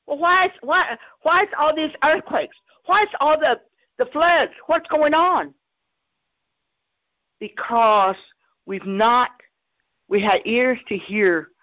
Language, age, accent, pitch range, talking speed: English, 50-69, American, 170-240 Hz, 135 wpm